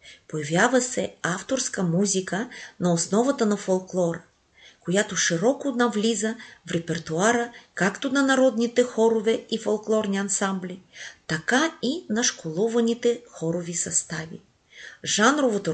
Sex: female